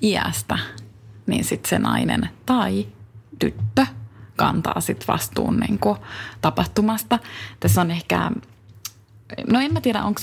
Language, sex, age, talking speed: Finnish, female, 30-49, 115 wpm